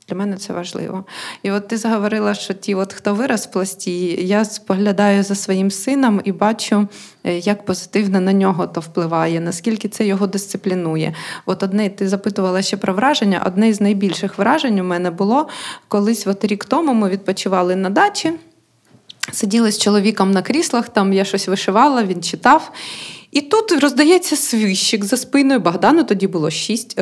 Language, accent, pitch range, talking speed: Ukrainian, native, 195-265 Hz, 165 wpm